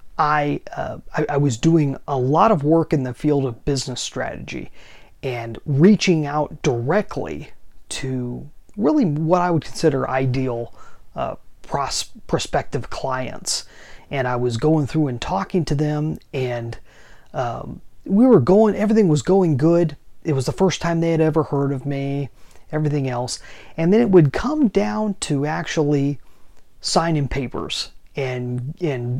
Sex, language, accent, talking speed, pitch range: male, English, American, 150 wpm, 130-170 Hz